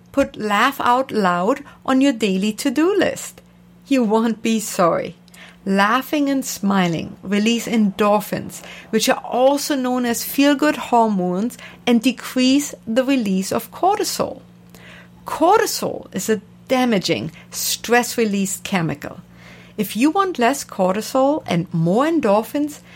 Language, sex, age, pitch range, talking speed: English, female, 50-69, 180-265 Hz, 120 wpm